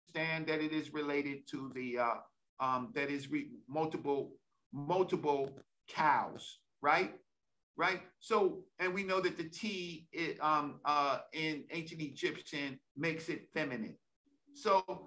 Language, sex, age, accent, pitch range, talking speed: English, male, 50-69, American, 155-230 Hz, 125 wpm